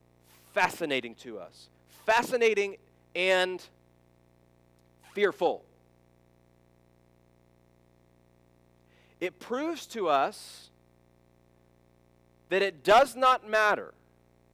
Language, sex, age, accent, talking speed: English, male, 40-59, American, 60 wpm